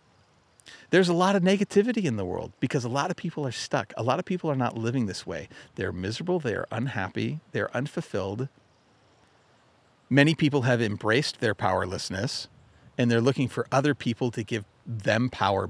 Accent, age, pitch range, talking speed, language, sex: American, 40-59, 115-165 Hz, 175 wpm, English, male